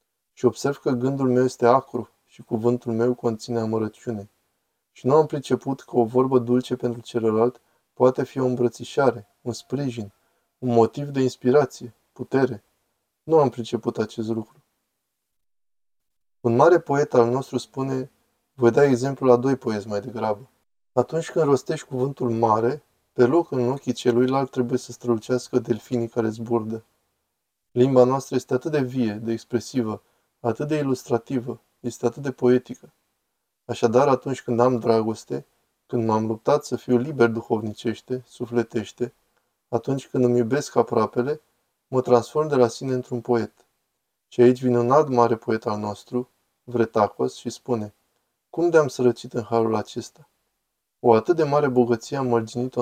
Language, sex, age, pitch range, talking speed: Romanian, male, 20-39, 115-130 Hz, 150 wpm